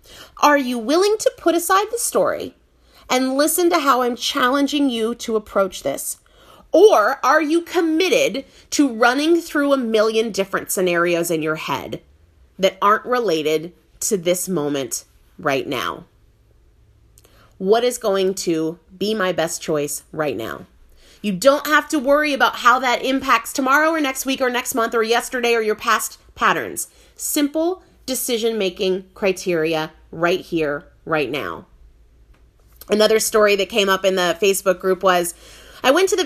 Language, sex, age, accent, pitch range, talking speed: English, female, 30-49, American, 185-275 Hz, 155 wpm